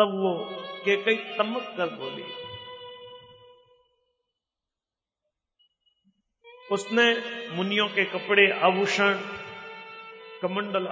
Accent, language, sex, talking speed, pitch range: native, Hindi, male, 60 wpm, 125-200 Hz